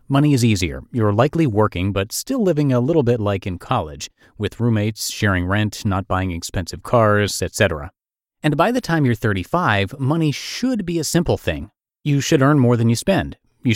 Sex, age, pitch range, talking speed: male, 30-49, 95-130 Hz, 190 wpm